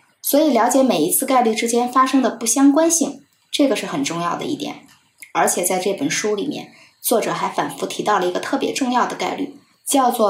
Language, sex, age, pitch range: Chinese, female, 20-39, 205-270 Hz